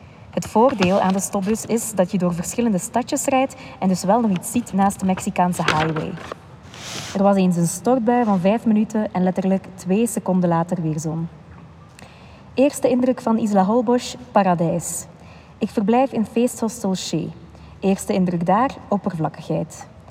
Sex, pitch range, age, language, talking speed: female, 175-225 Hz, 20-39, Dutch, 155 wpm